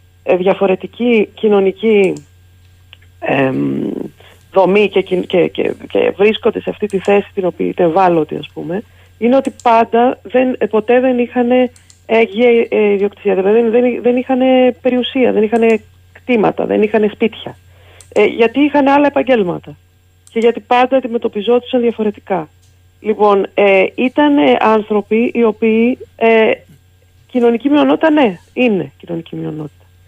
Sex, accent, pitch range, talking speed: female, native, 180-240 Hz, 130 wpm